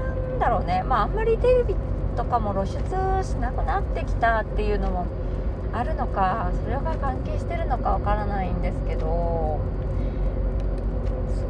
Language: Japanese